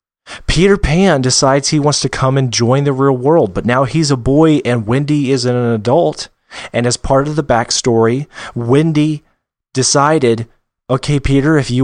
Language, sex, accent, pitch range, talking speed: English, male, American, 125-160 Hz, 170 wpm